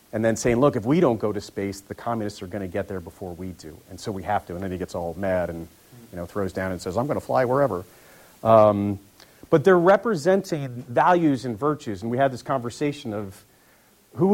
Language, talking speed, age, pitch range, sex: English, 240 wpm, 40-59, 100-140 Hz, male